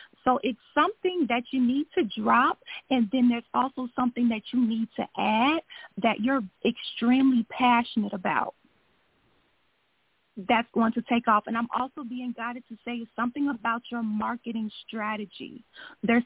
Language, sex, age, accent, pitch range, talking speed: English, female, 30-49, American, 235-280 Hz, 150 wpm